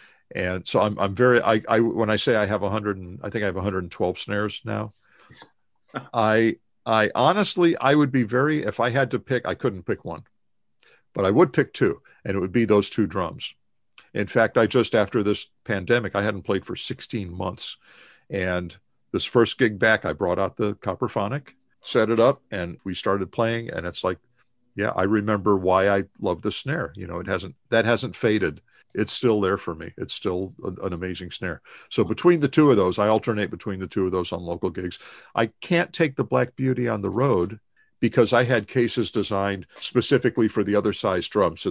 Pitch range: 95-120 Hz